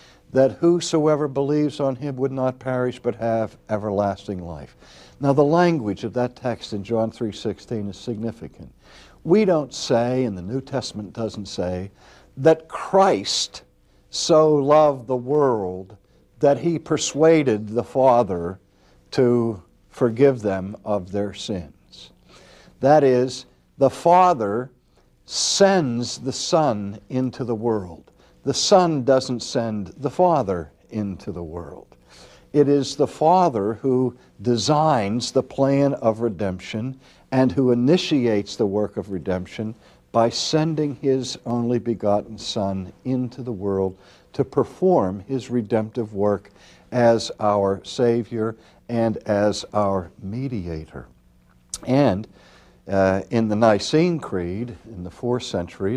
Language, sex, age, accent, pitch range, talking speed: English, male, 60-79, American, 100-130 Hz, 125 wpm